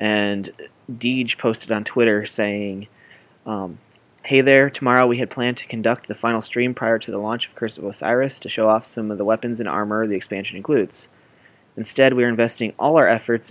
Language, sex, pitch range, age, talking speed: English, male, 105-115 Hz, 20-39, 200 wpm